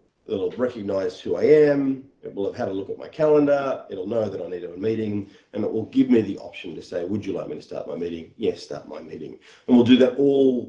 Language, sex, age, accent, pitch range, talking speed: English, male, 40-59, Australian, 100-150 Hz, 275 wpm